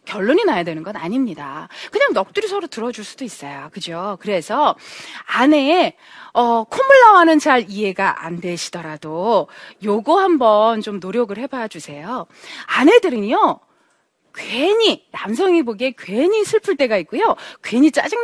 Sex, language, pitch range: female, Korean, 200-330 Hz